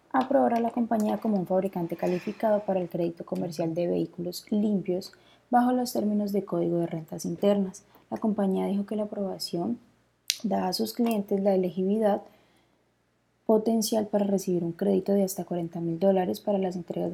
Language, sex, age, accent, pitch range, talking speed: Spanish, female, 20-39, Colombian, 175-205 Hz, 160 wpm